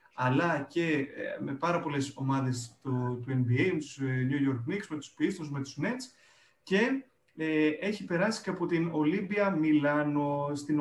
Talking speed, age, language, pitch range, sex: 160 wpm, 30-49, Greek, 140-185 Hz, male